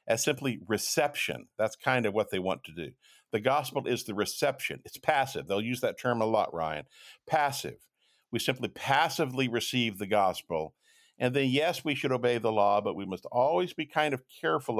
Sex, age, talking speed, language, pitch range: male, 50-69, 190 wpm, English, 100-145 Hz